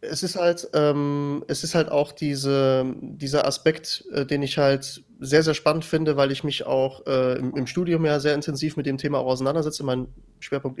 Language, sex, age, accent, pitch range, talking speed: German, male, 20-39, German, 145-170 Hz, 180 wpm